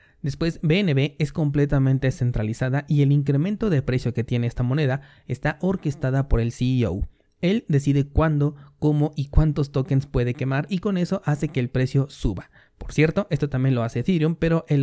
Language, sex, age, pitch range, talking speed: Spanish, male, 30-49, 130-150 Hz, 180 wpm